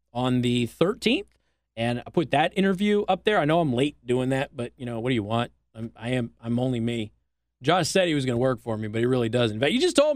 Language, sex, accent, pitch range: English, male, American, 125-175 Hz